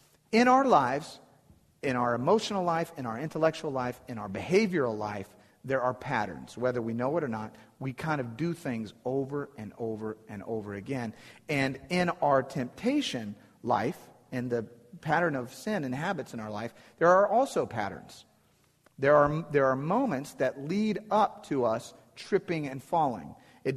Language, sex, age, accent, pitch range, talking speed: English, male, 40-59, American, 120-160 Hz, 170 wpm